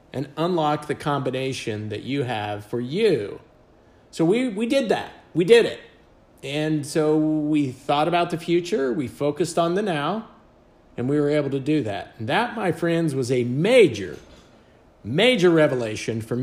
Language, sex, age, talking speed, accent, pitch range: English, male, 50-69, 170 wpm, American, 125-165 Hz